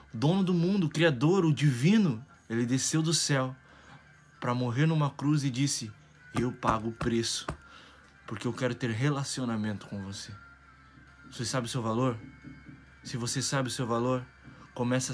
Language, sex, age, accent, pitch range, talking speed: Portuguese, male, 20-39, Brazilian, 110-145 Hz, 160 wpm